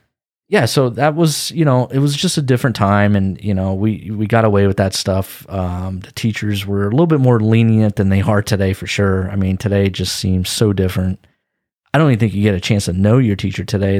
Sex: male